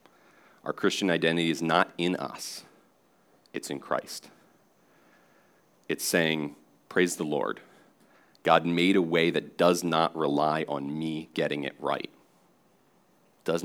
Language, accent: English, American